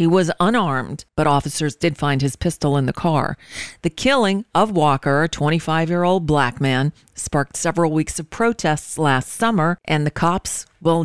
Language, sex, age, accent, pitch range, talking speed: English, female, 40-59, American, 145-180 Hz, 170 wpm